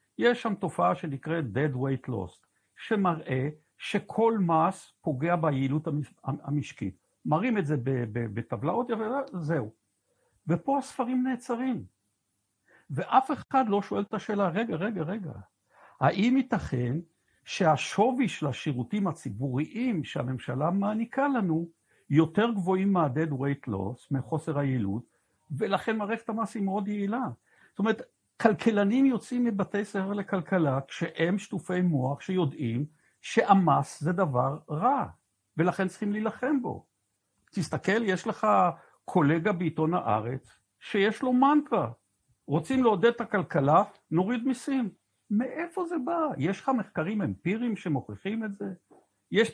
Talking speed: 115 wpm